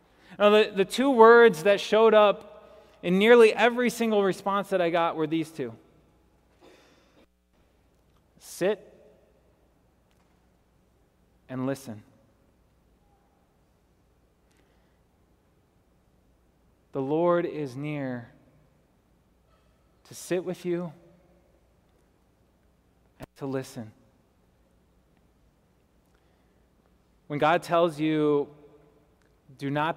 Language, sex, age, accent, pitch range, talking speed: English, male, 20-39, American, 135-195 Hz, 75 wpm